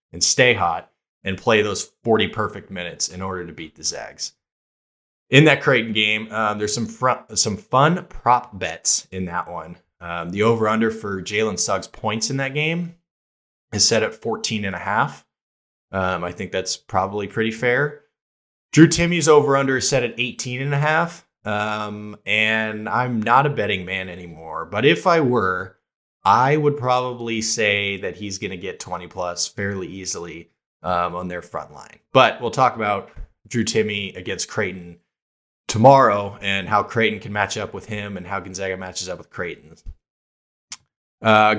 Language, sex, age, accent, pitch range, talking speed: English, male, 20-39, American, 95-120 Hz, 175 wpm